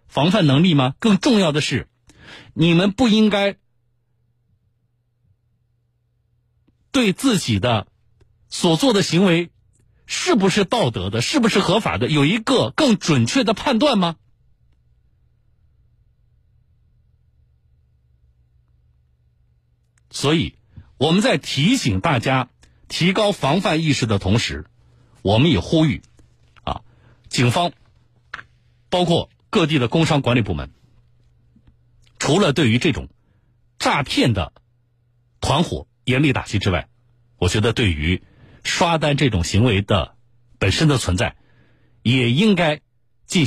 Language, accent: Chinese, native